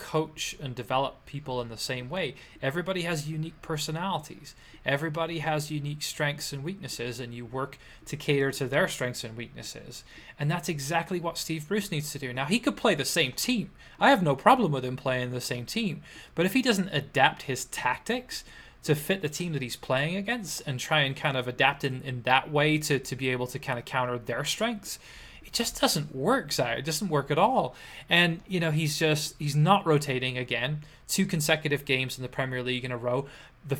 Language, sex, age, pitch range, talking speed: English, male, 20-39, 130-165 Hz, 210 wpm